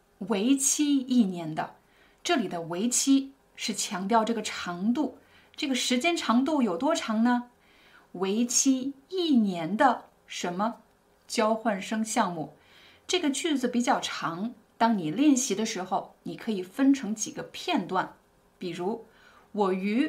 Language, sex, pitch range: Chinese, female, 195-255 Hz